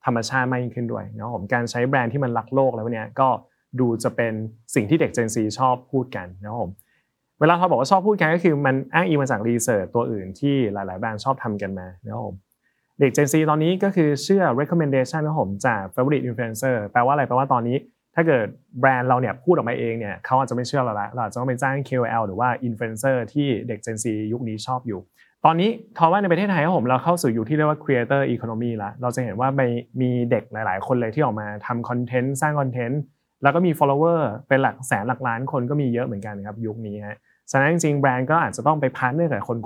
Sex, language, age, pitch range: male, Thai, 20-39, 115-145 Hz